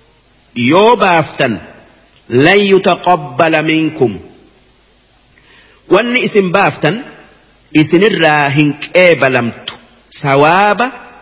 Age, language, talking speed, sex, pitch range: 50-69, Arabic, 65 wpm, male, 160-195 Hz